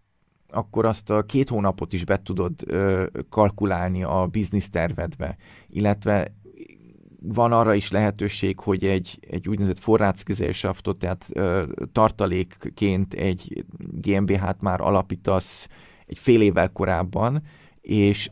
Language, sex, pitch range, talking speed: Hungarian, male, 95-105 Hz, 115 wpm